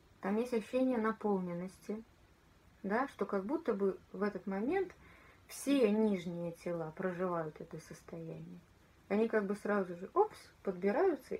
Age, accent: 20-39, native